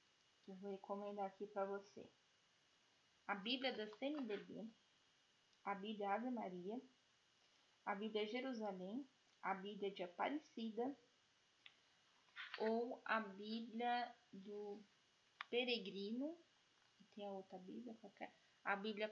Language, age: Portuguese, 10-29